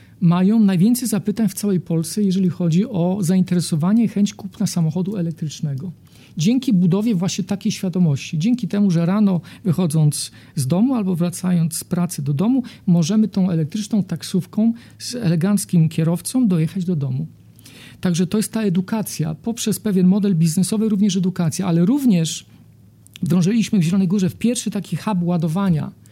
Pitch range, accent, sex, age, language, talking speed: 165-200 Hz, native, male, 50-69, Polish, 145 wpm